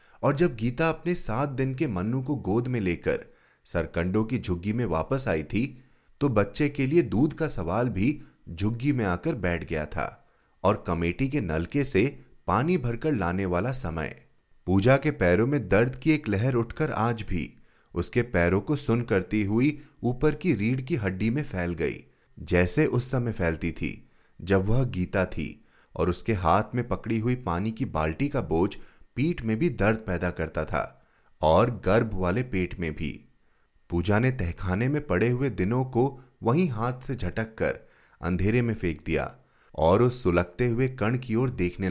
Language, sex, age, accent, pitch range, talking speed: Hindi, male, 30-49, native, 90-130 Hz, 180 wpm